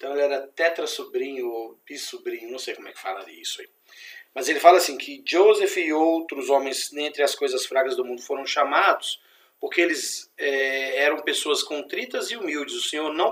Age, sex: 40-59, male